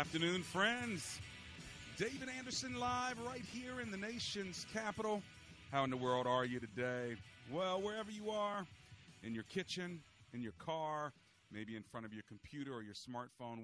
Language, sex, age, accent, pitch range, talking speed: English, male, 40-59, American, 105-150 Hz, 165 wpm